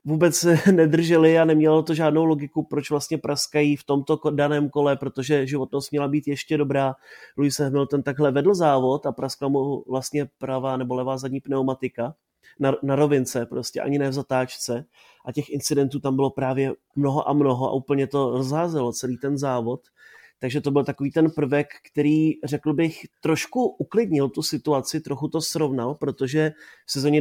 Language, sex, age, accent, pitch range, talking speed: Czech, male, 30-49, native, 135-150 Hz, 170 wpm